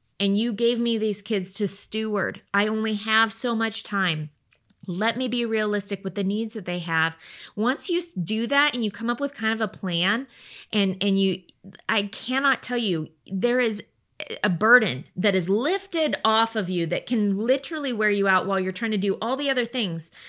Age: 20-39